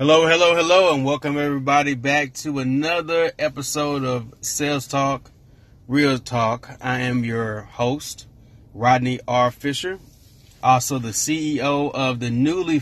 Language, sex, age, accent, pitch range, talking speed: English, male, 30-49, American, 115-140 Hz, 130 wpm